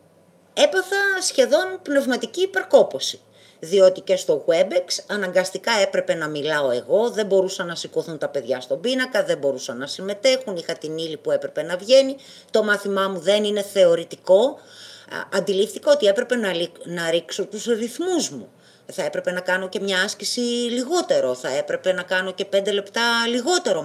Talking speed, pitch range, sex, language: 160 wpm, 185-290 Hz, female, Greek